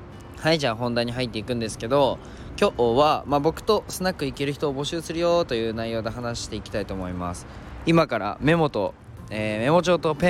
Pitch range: 110-150 Hz